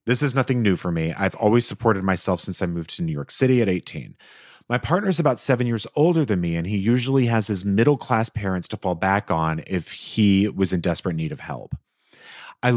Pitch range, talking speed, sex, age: 90-115 Hz, 225 wpm, male, 30-49